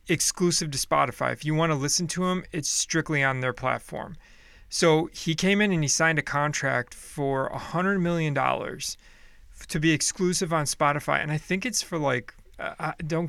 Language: English